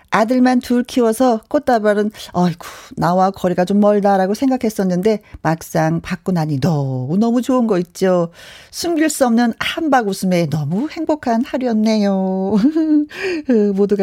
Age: 40-59